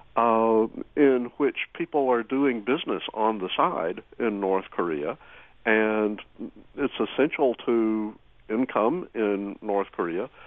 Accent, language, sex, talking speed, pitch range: American, English, male, 120 wpm, 95-120 Hz